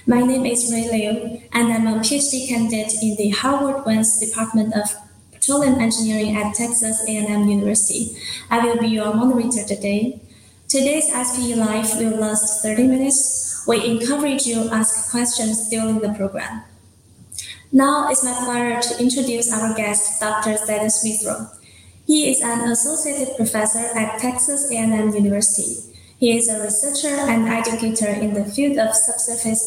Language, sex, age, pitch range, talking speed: English, female, 20-39, 215-245 Hz, 150 wpm